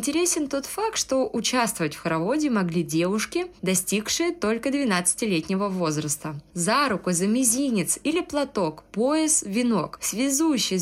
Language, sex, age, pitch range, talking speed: Russian, female, 20-39, 180-285 Hz, 120 wpm